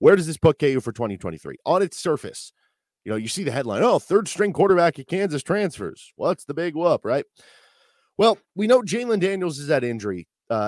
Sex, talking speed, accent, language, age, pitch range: male, 200 wpm, American, English, 30-49, 105-140 Hz